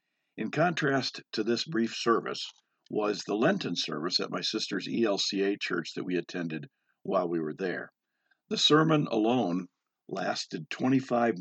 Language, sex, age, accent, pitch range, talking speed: English, male, 50-69, American, 90-125 Hz, 140 wpm